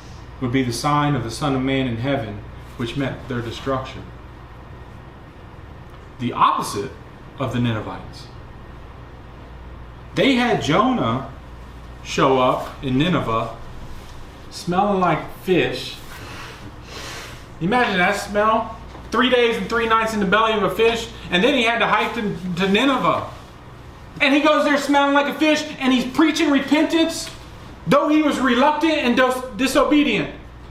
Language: English